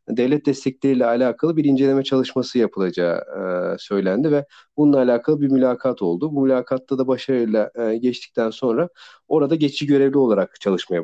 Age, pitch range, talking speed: 40-59, 115-150 Hz, 145 wpm